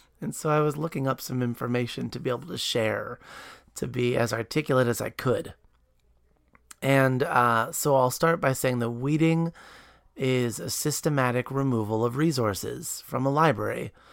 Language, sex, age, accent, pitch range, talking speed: English, male, 30-49, American, 120-155 Hz, 160 wpm